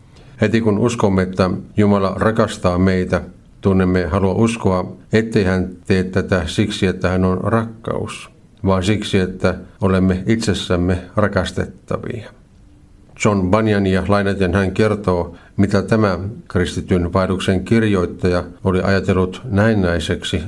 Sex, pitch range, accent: male, 90-105 Hz, native